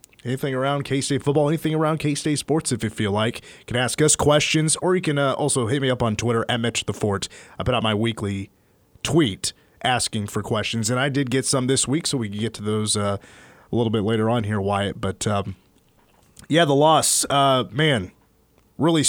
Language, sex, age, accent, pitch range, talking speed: English, male, 30-49, American, 110-145 Hz, 210 wpm